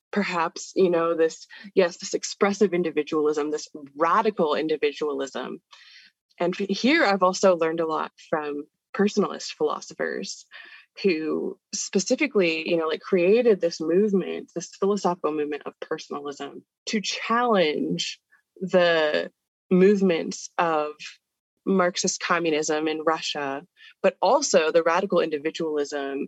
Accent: American